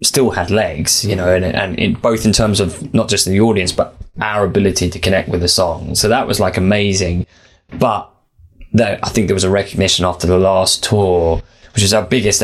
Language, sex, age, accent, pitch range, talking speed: English, male, 20-39, British, 90-110 Hz, 215 wpm